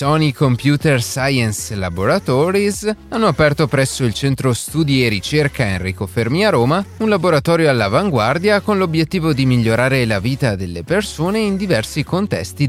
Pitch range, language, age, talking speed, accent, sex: 110-160 Hz, Italian, 30-49, 140 wpm, native, male